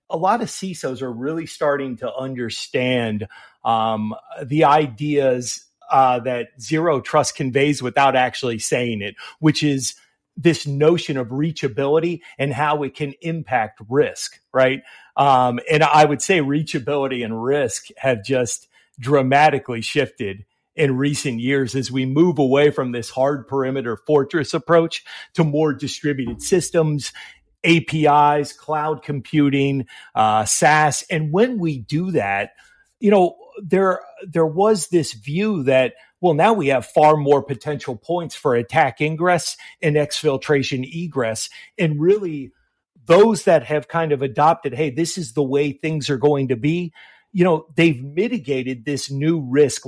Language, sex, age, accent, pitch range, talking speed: English, male, 40-59, American, 130-160 Hz, 145 wpm